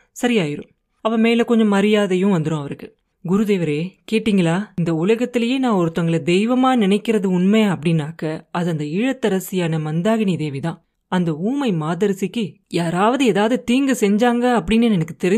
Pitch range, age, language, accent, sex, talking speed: 170-225 Hz, 30-49, Tamil, native, female, 65 wpm